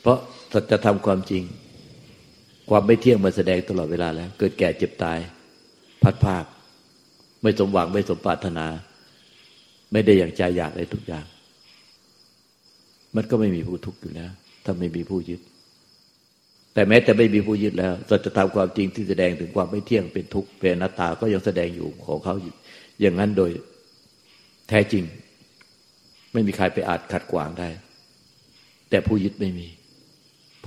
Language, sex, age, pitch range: Thai, male, 60-79, 85-105 Hz